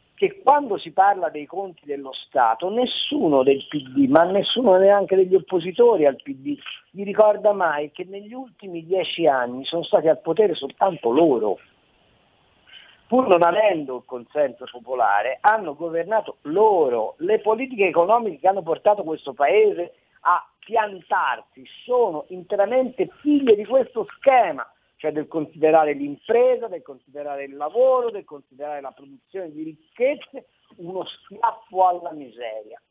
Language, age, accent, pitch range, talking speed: Italian, 50-69, native, 155-235 Hz, 135 wpm